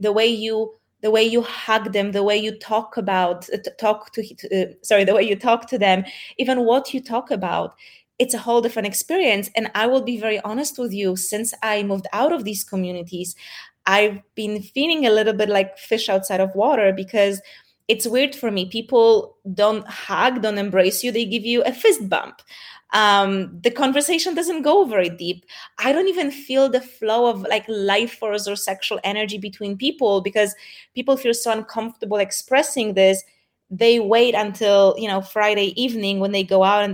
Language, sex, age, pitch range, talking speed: English, female, 20-39, 200-260 Hz, 190 wpm